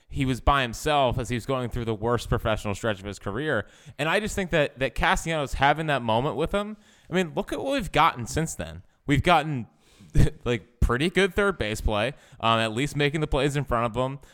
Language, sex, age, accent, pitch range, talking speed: English, male, 20-39, American, 105-140 Hz, 230 wpm